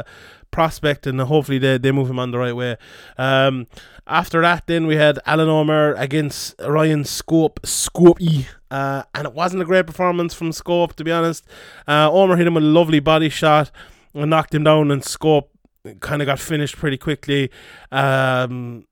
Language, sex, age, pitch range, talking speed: English, male, 20-39, 140-175 Hz, 180 wpm